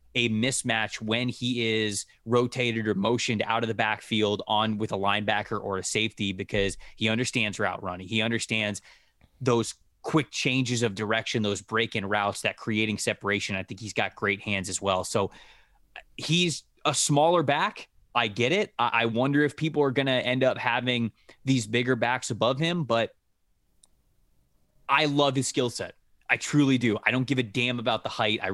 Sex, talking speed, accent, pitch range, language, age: male, 185 wpm, American, 105-125 Hz, English, 20-39